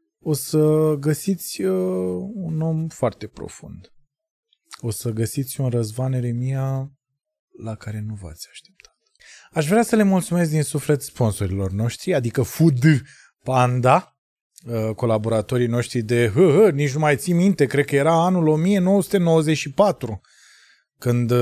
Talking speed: 135 wpm